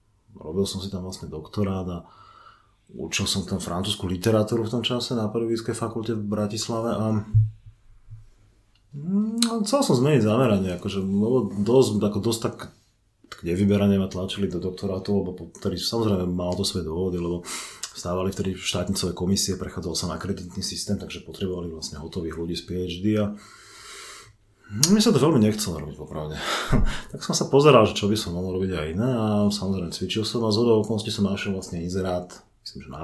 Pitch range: 90-110 Hz